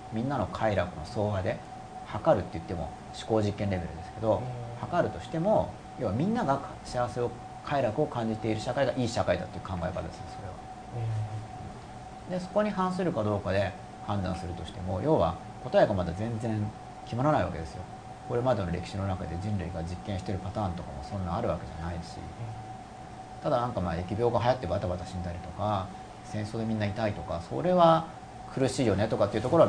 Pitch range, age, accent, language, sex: 95-120 Hz, 40-59, native, Japanese, male